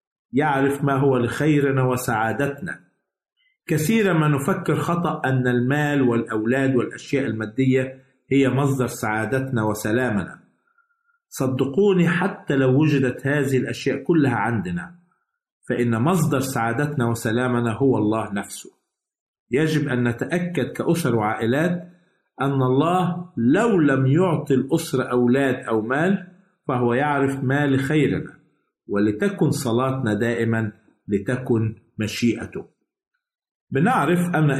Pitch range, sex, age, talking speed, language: 120-160 Hz, male, 50-69, 100 wpm, Arabic